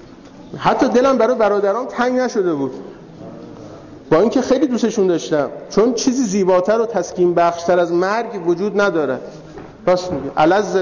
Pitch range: 165-220 Hz